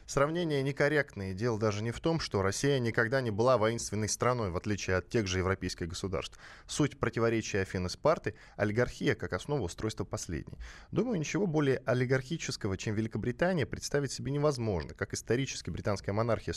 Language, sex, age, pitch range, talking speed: Russian, male, 10-29, 95-130 Hz, 150 wpm